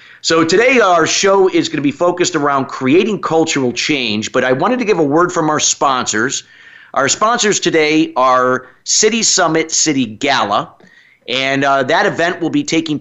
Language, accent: English, American